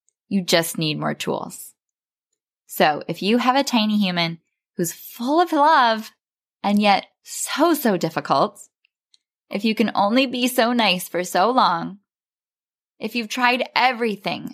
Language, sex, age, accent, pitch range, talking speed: English, female, 10-29, American, 170-235 Hz, 145 wpm